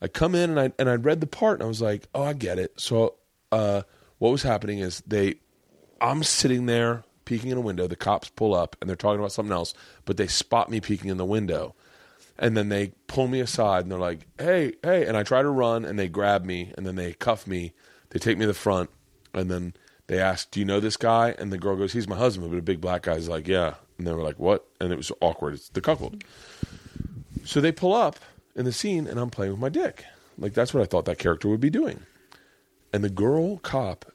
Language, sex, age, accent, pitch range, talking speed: English, male, 30-49, American, 95-130 Hz, 250 wpm